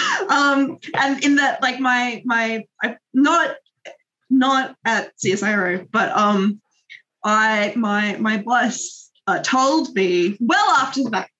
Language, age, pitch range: English, 20-39, 200-245 Hz